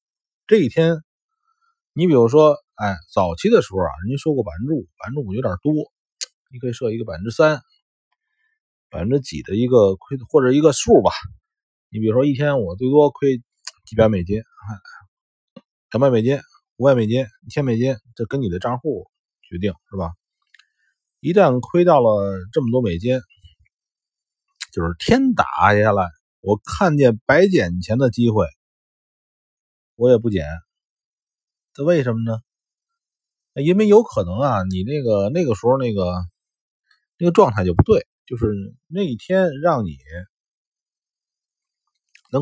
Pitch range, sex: 95-155 Hz, male